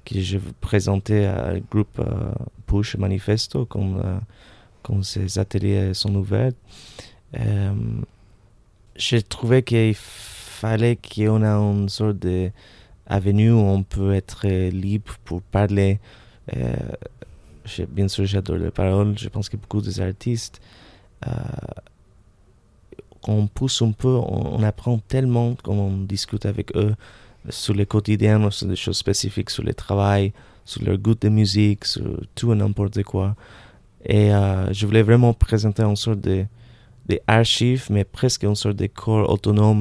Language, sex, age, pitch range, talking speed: French, male, 30-49, 100-110 Hz, 150 wpm